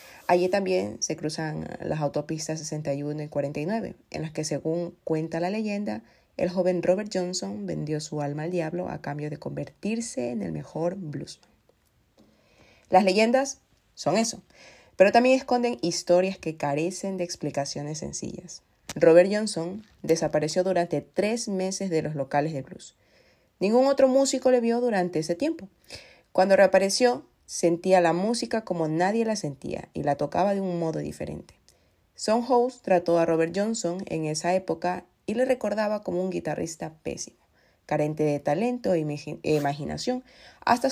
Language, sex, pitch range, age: Spanish, female, 150-195 Hz, 30-49